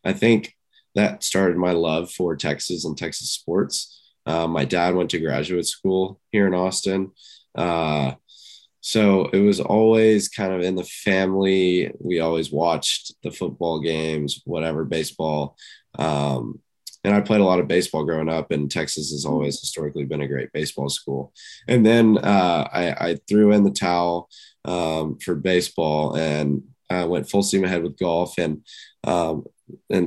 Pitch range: 75-95 Hz